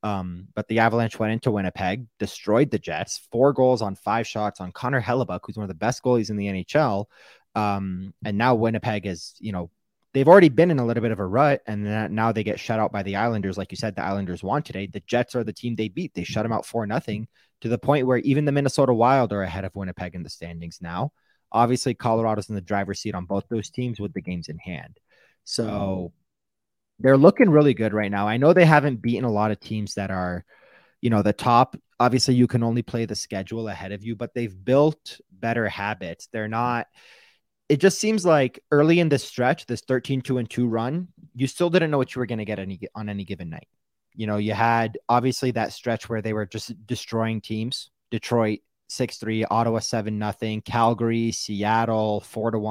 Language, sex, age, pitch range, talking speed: English, male, 20-39, 105-125 Hz, 220 wpm